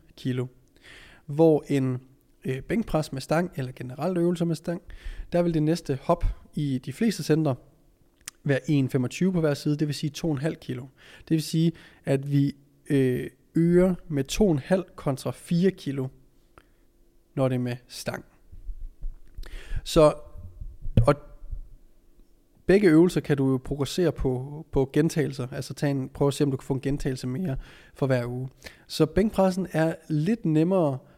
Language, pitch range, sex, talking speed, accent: Danish, 130-160 Hz, male, 150 wpm, native